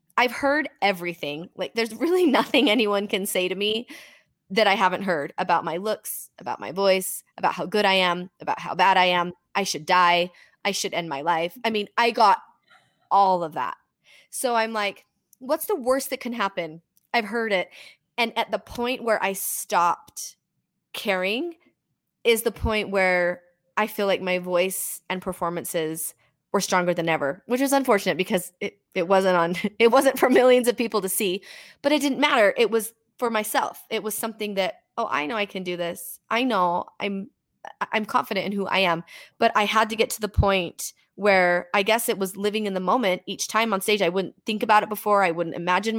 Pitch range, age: 185-230 Hz, 20-39